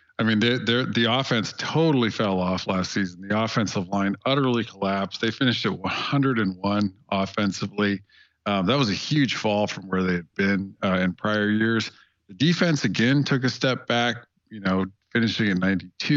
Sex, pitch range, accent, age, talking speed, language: male, 95-115 Hz, American, 50-69, 175 wpm, English